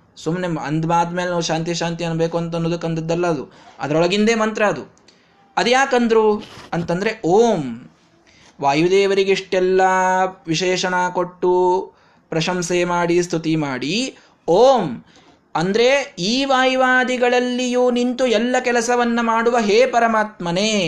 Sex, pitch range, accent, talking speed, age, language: male, 160-205 Hz, native, 95 wpm, 20-39, Kannada